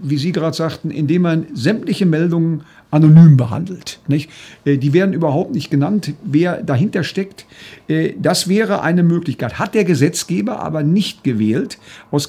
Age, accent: 50-69, German